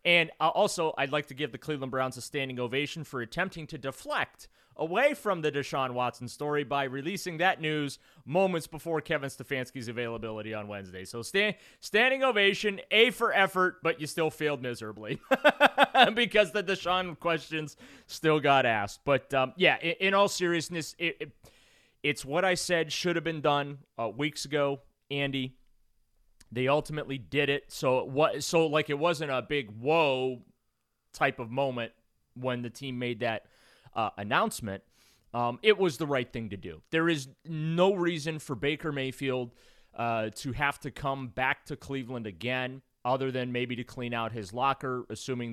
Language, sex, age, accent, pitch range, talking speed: English, male, 30-49, American, 120-160 Hz, 165 wpm